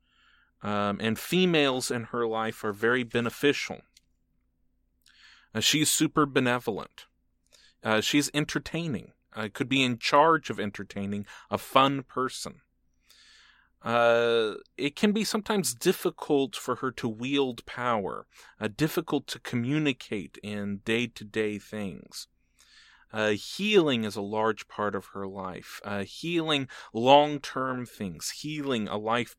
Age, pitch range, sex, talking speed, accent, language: 40-59, 105-145 Hz, male, 125 wpm, American, English